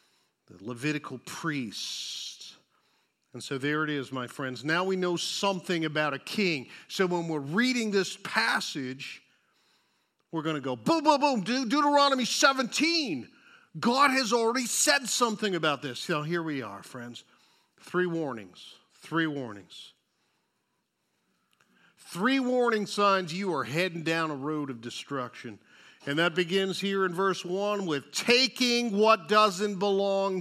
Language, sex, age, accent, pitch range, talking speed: English, male, 50-69, American, 145-220 Hz, 140 wpm